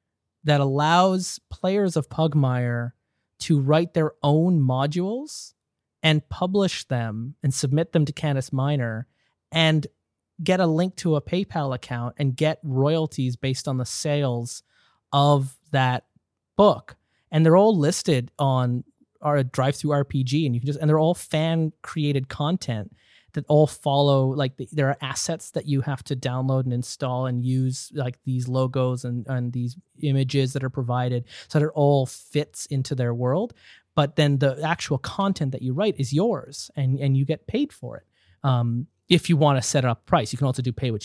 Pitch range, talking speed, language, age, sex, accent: 125-155 Hz, 175 wpm, English, 30-49, male, American